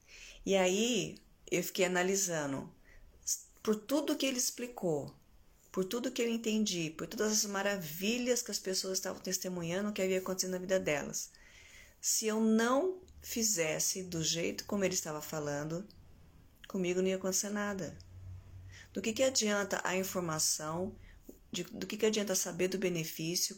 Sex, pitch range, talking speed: female, 160-215 Hz, 150 wpm